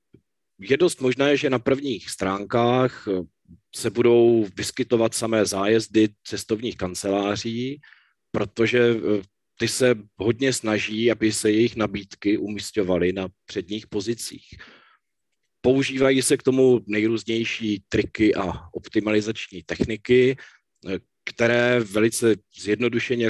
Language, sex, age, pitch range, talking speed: Czech, male, 40-59, 100-120 Hz, 100 wpm